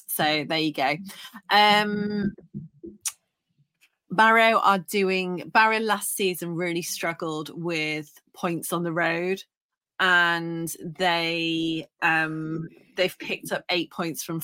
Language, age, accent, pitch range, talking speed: English, 30-49, British, 160-190 Hz, 110 wpm